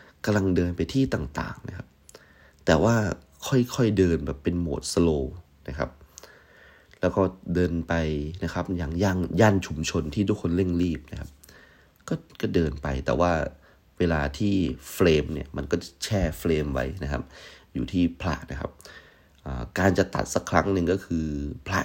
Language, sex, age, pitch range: Thai, male, 30-49, 75-95 Hz